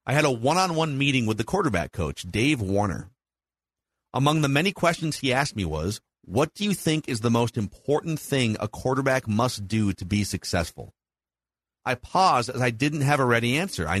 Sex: male